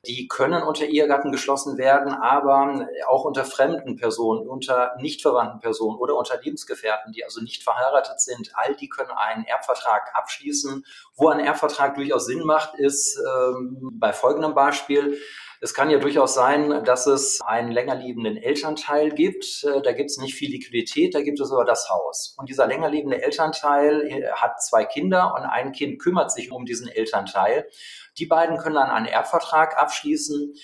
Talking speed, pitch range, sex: 170 wpm, 130-160 Hz, male